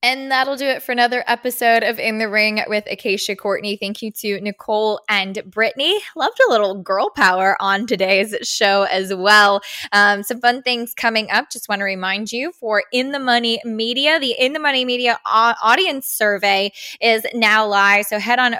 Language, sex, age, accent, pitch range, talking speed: English, female, 10-29, American, 200-235 Hz, 190 wpm